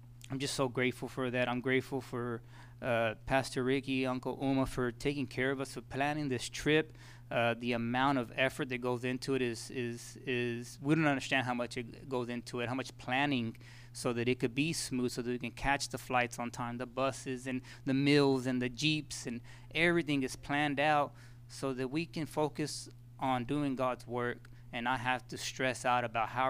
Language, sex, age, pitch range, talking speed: English, male, 20-39, 120-135 Hz, 205 wpm